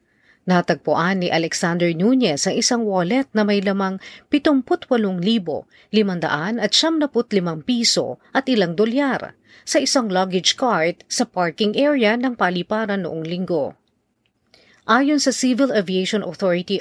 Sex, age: female, 40-59